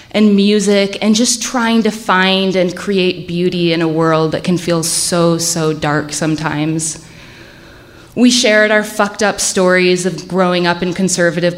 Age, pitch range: 20-39, 165-215 Hz